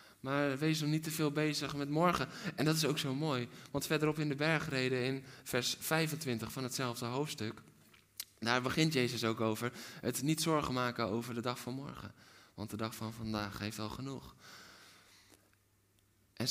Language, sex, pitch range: Dutch, male, 110-140 Hz